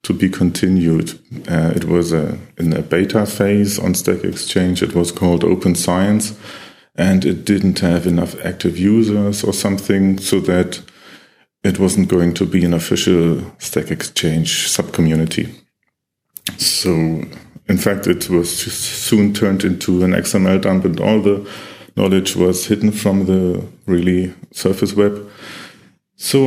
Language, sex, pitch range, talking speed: German, male, 90-105 Hz, 145 wpm